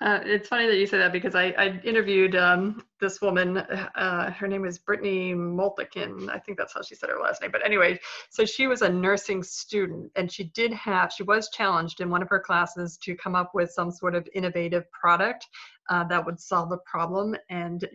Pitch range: 175-195 Hz